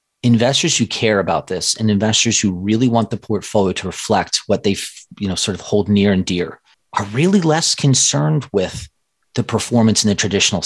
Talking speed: 190 wpm